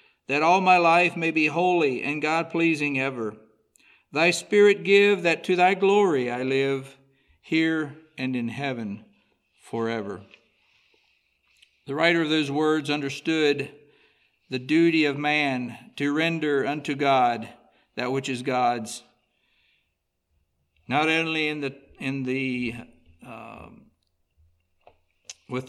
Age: 60-79